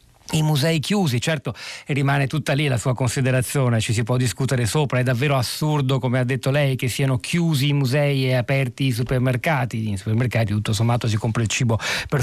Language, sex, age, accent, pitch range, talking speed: Italian, male, 40-59, native, 120-150 Hz, 195 wpm